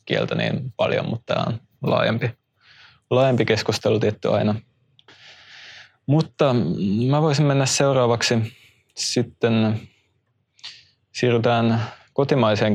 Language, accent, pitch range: Finnish, native, 105-115 Hz